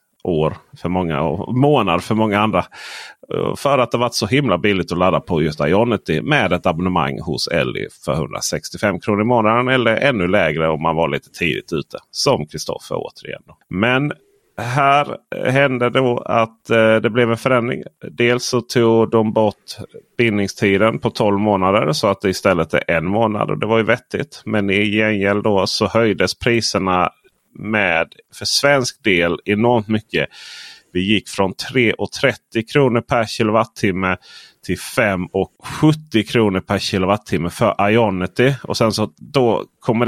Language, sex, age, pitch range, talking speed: Swedish, male, 30-49, 95-120 Hz, 165 wpm